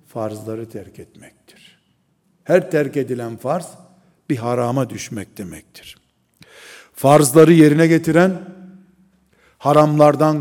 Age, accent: 60-79, native